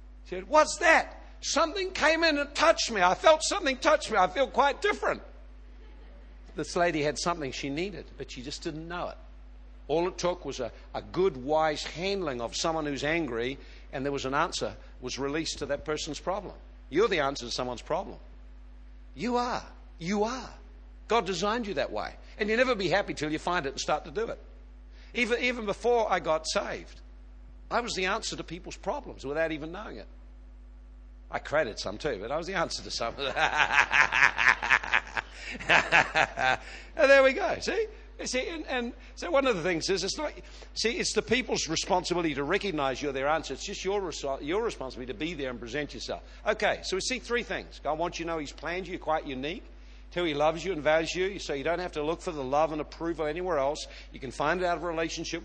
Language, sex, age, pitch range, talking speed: English, male, 60-79, 140-220 Hz, 210 wpm